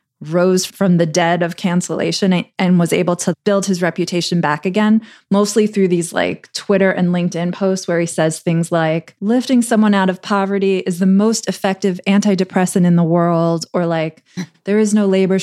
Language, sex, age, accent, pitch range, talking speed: English, female, 20-39, American, 175-210 Hz, 185 wpm